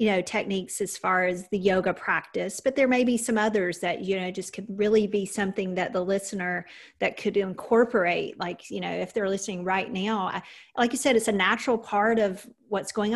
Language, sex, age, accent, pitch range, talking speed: English, female, 40-59, American, 190-225 Hz, 215 wpm